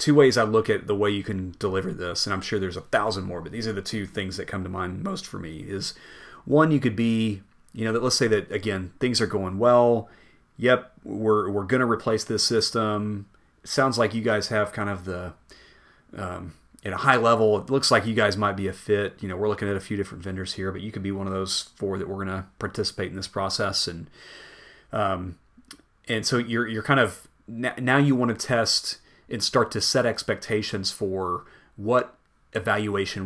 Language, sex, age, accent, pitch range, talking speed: English, male, 30-49, American, 95-115 Hz, 225 wpm